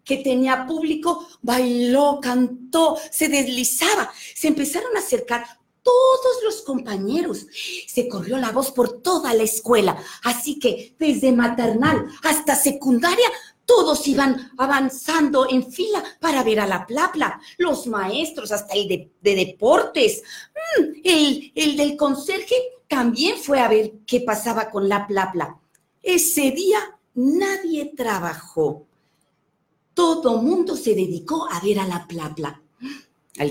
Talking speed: 130 wpm